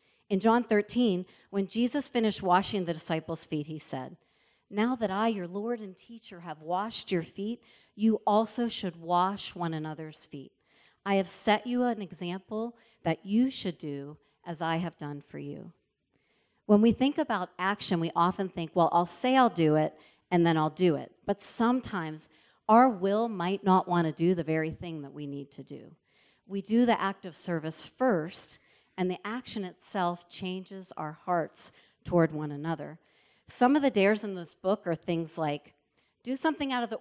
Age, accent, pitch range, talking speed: 40-59, American, 165-225 Hz, 185 wpm